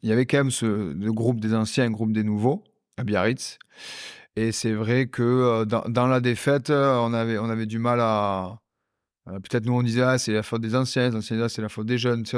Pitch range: 110-125 Hz